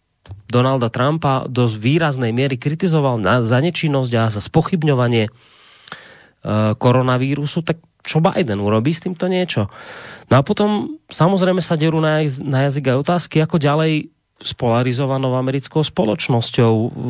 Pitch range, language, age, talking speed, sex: 115-145 Hz, Slovak, 30-49, 125 wpm, male